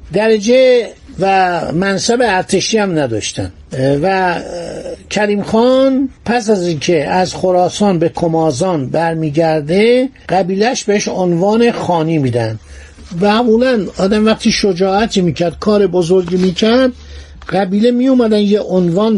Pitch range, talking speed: 160-215 Hz, 115 wpm